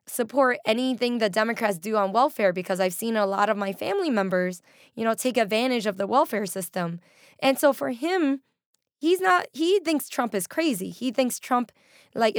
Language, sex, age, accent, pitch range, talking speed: English, female, 10-29, American, 195-255 Hz, 190 wpm